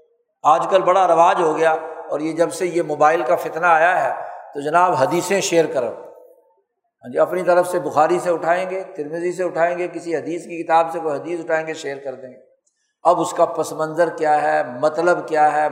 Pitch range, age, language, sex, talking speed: 160-195 Hz, 60-79, Urdu, male, 220 wpm